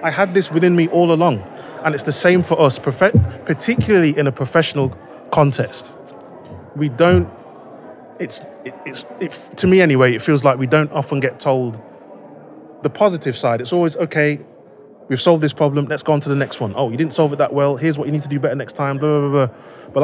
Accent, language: British, Romanian